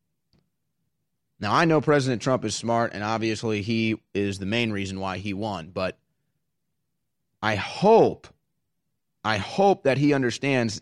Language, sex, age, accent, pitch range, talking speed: English, male, 30-49, American, 110-145 Hz, 140 wpm